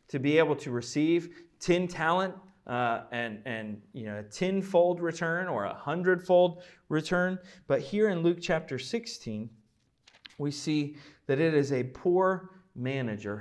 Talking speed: 140 wpm